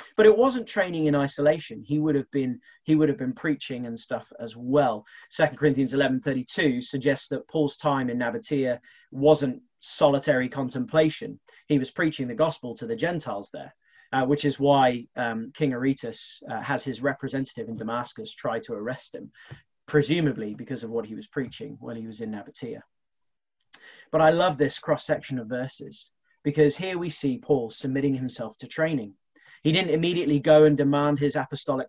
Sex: male